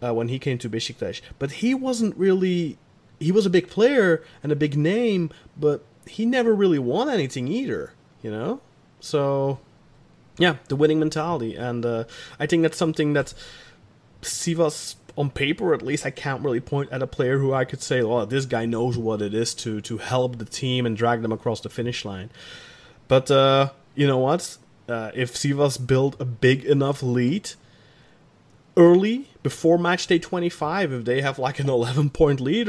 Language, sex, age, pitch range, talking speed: English, male, 30-49, 120-155 Hz, 185 wpm